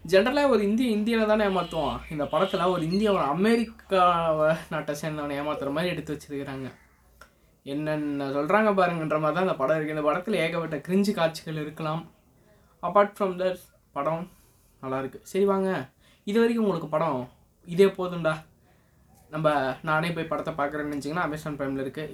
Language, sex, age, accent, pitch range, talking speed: Tamil, female, 20-39, native, 145-185 Hz, 145 wpm